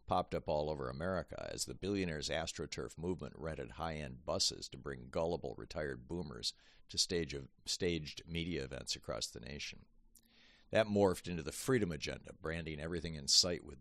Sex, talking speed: male, 160 wpm